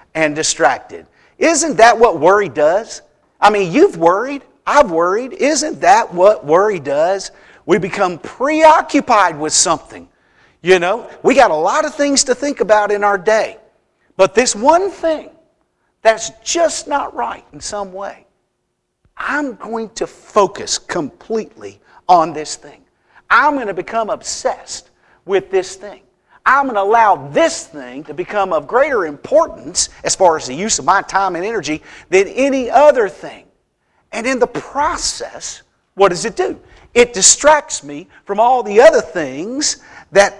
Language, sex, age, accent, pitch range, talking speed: English, male, 50-69, American, 200-295 Hz, 155 wpm